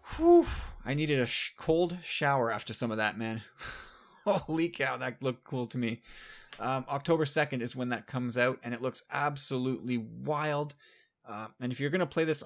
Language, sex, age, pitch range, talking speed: English, male, 20-39, 120-155 Hz, 195 wpm